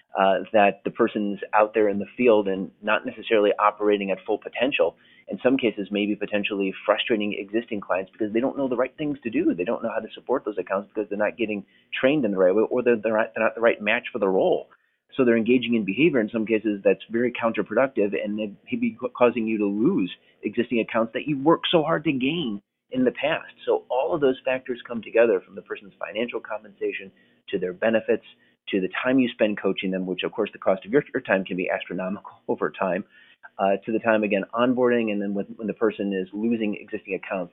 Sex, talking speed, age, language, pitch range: male, 230 wpm, 30-49, English, 100-120 Hz